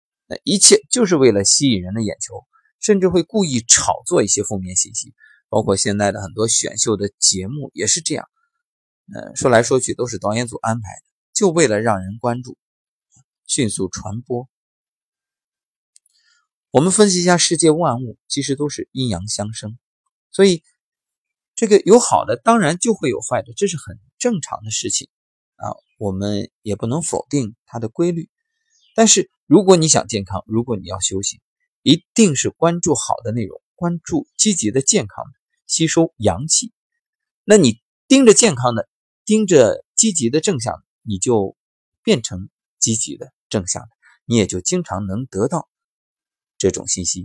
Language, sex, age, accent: Chinese, male, 20-39, native